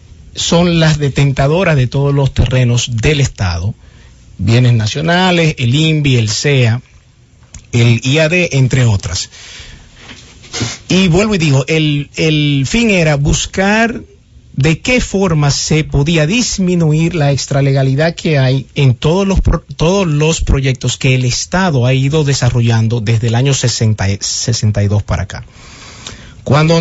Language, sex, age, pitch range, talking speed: English, male, 50-69, 115-155 Hz, 130 wpm